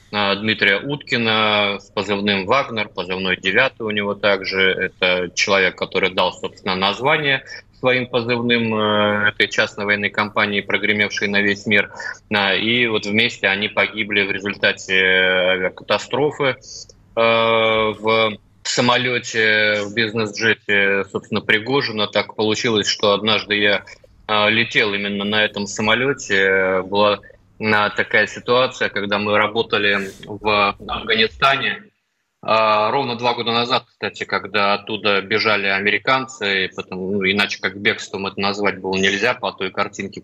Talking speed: 120 wpm